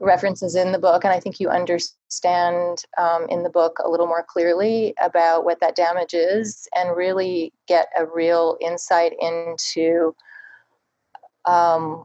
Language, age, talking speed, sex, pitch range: English, 30-49, 150 wpm, female, 165-180 Hz